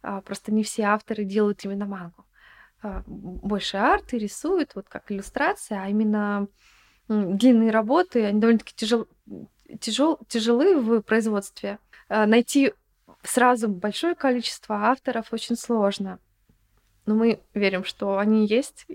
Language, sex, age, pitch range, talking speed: Russian, female, 20-39, 210-255 Hz, 110 wpm